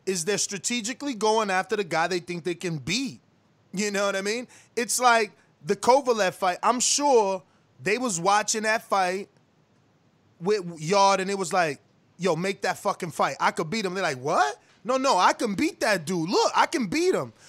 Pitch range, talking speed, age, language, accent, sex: 170-225 Hz, 200 wpm, 20-39, English, American, male